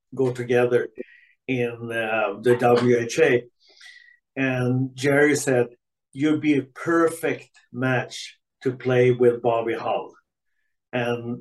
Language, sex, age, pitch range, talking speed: English, male, 50-69, 120-140 Hz, 105 wpm